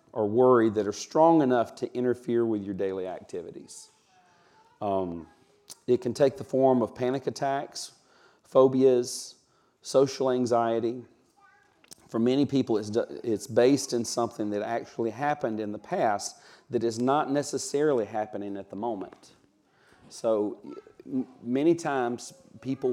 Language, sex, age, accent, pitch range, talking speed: English, male, 40-59, American, 110-140 Hz, 130 wpm